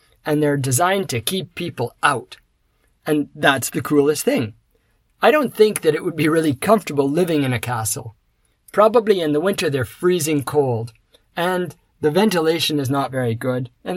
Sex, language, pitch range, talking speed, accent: male, English, 130-195 Hz, 170 wpm, American